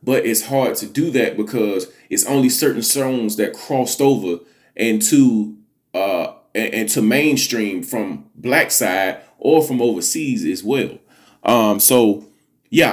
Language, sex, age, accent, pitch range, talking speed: English, male, 30-49, American, 110-140 Hz, 135 wpm